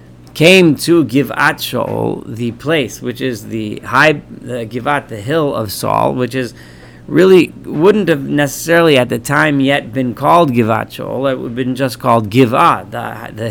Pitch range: 115-150 Hz